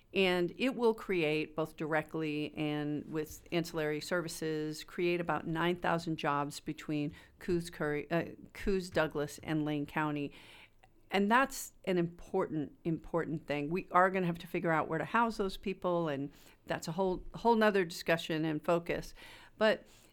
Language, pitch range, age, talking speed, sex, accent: English, 155-195 Hz, 50-69, 150 wpm, female, American